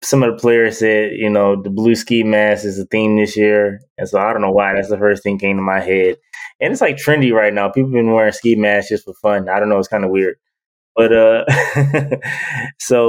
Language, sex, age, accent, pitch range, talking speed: English, male, 20-39, American, 100-115 Hz, 255 wpm